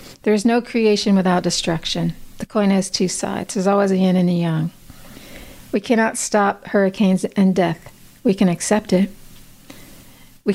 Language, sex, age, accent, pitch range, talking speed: English, female, 40-59, American, 180-210 Hz, 165 wpm